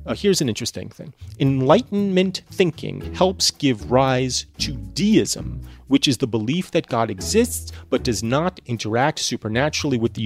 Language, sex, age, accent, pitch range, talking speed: English, male, 30-49, American, 115-165 Hz, 145 wpm